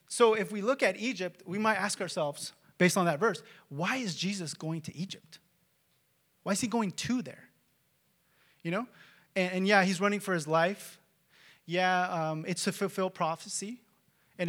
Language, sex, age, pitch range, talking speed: English, male, 30-49, 155-195 Hz, 180 wpm